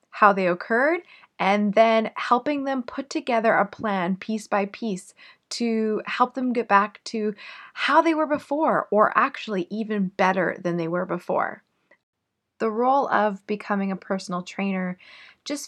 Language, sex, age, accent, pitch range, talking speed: English, female, 20-39, American, 180-225 Hz, 155 wpm